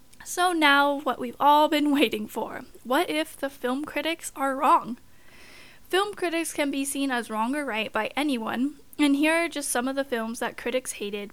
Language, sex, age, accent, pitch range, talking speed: English, female, 10-29, American, 235-290 Hz, 195 wpm